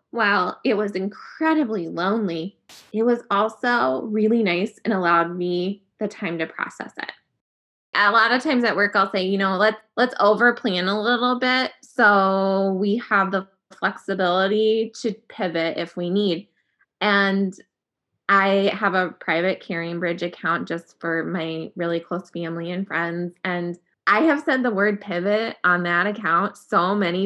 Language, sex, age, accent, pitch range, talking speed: English, female, 20-39, American, 180-225 Hz, 160 wpm